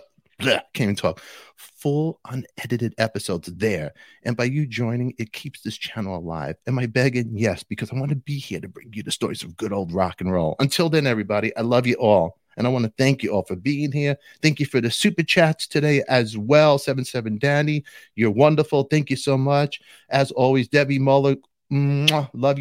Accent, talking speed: American, 205 wpm